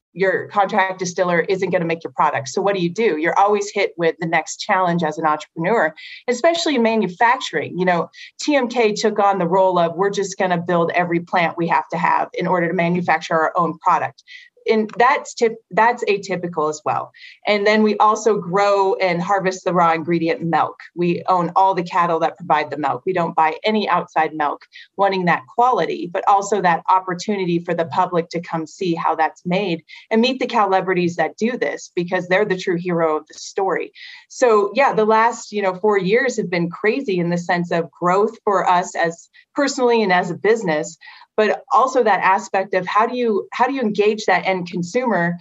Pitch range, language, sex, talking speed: 175-215 Hz, English, female, 205 wpm